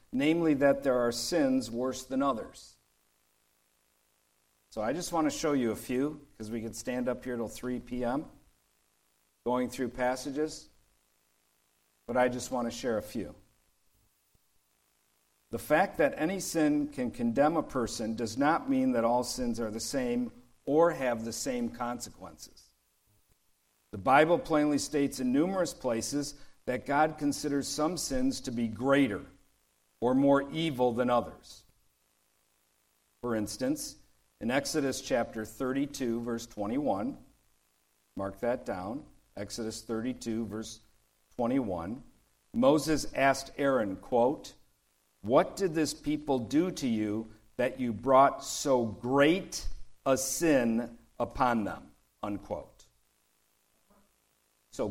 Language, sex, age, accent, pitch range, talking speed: English, male, 50-69, American, 110-145 Hz, 130 wpm